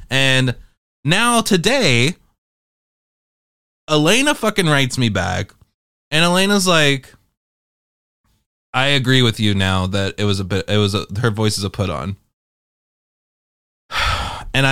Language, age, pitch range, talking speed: English, 20-39, 100-150 Hz, 120 wpm